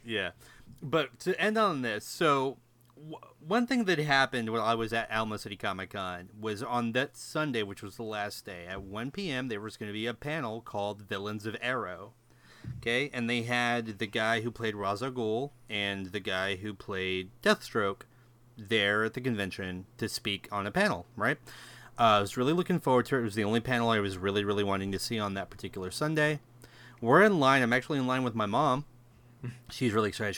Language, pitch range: English, 110-180 Hz